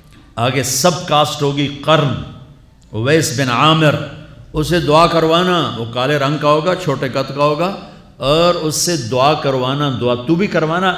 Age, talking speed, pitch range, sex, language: 50-69, 160 wpm, 110-155 Hz, male, Urdu